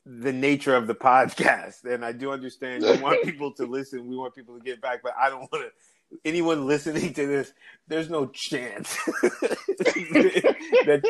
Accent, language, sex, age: American, English, male, 30-49